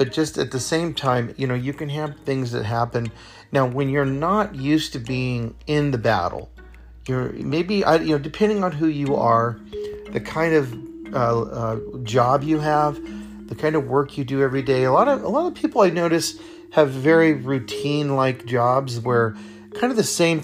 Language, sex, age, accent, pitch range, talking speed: English, male, 40-59, American, 115-160 Hz, 200 wpm